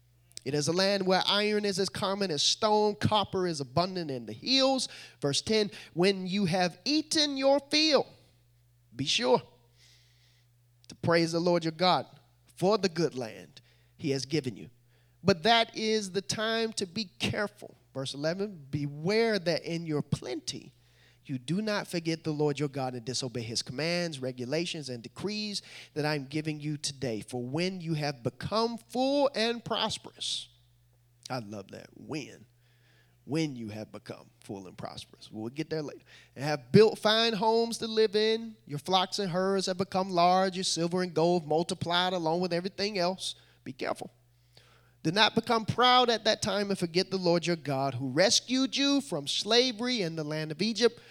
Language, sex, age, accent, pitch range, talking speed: English, male, 30-49, American, 130-205 Hz, 175 wpm